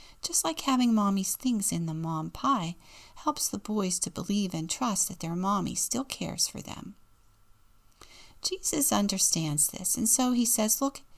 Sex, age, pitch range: female, 40-59, 175-240 Hz